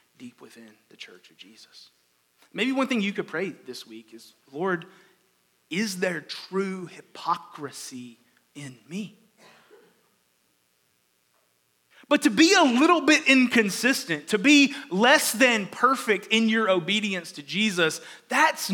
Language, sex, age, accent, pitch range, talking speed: English, male, 30-49, American, 165-255 Hz, 130 wpm